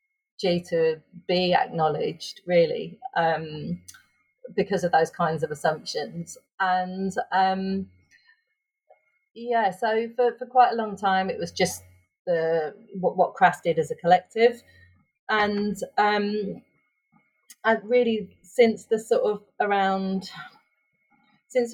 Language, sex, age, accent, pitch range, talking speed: English, female, 30-49, British, 165-215 Hz, 110 wpm